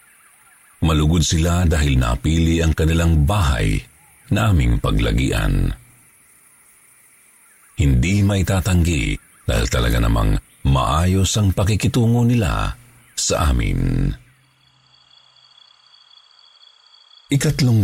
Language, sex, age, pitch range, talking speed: Filipino, male, 50-69, 75-100 Hz, 75 wpm